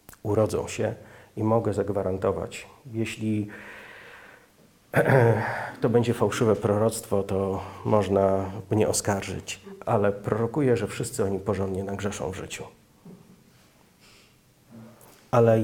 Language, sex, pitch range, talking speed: Polish, male, 105-130 Hz, 90 wpm